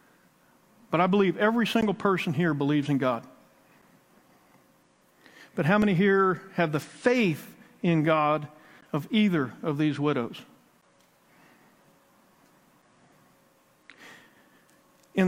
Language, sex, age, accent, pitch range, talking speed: English, male, 50-69, American, 145-195 Hz, 100 wpm